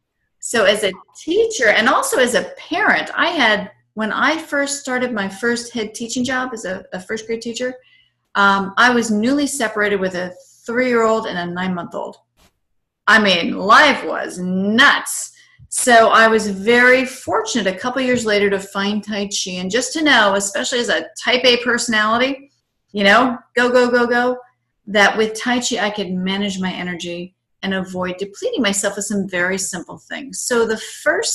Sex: female